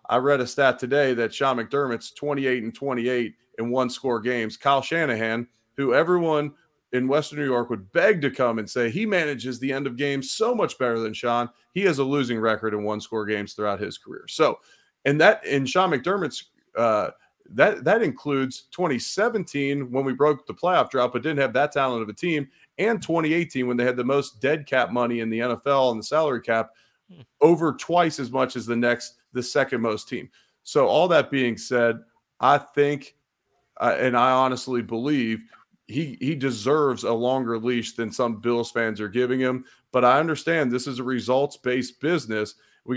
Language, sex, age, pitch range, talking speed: English, male, 30-49, 120-145 Hz, 195 wpm